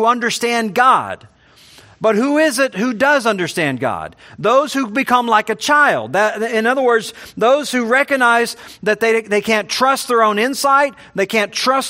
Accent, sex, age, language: American, male, 50-69, English